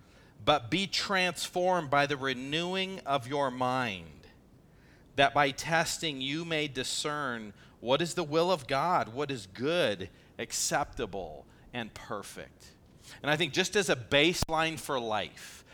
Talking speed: 135 wpm